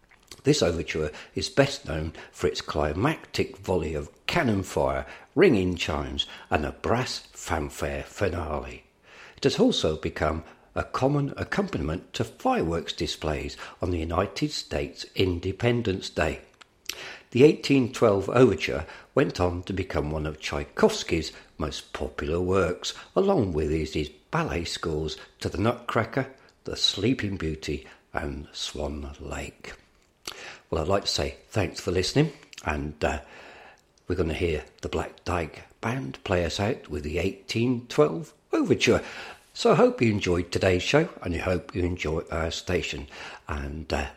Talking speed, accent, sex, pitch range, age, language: 140 wpm, British, male, 75-110 Hz, 60-79, English